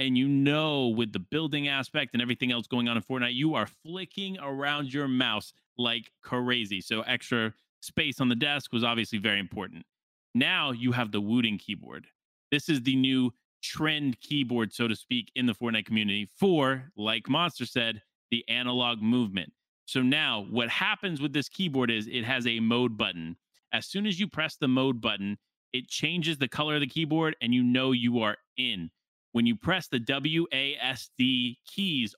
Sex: male